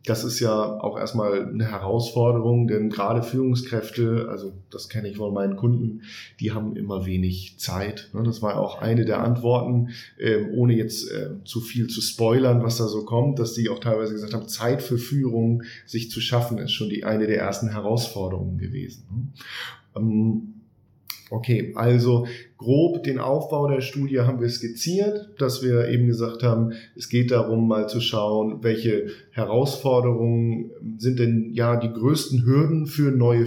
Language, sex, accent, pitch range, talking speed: German, male, German, 110-130 Hz, 160 wpm